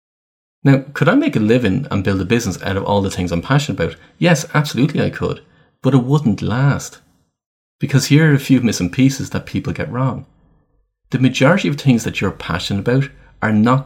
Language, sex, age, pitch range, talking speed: English, male, 30-49, 100-140 Hz, 205 wpm